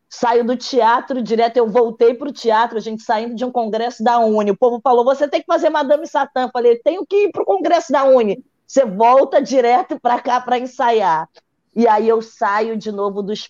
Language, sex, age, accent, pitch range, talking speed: Portuguese, female, 20-39, Brazilian, 185-240 Hz, 220 wpm